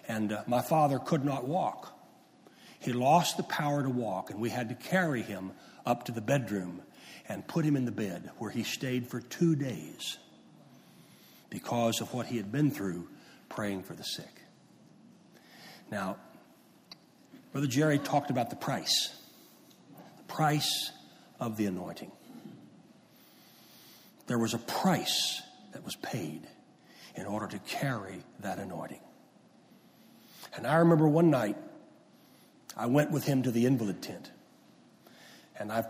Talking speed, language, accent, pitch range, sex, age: 140 wpm, English, American, 115-155 Hz, male, 60-79